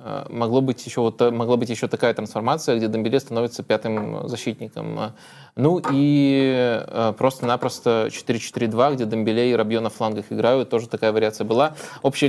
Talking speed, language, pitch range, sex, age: 145 wpm, Russian, 115-135 Hz, male, 20-39